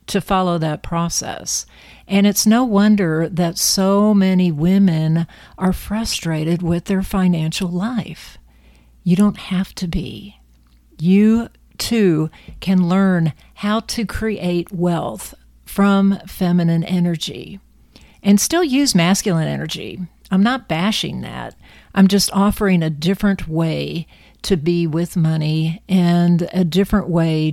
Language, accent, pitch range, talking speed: English, American, 160-195 Hz, 125 wpm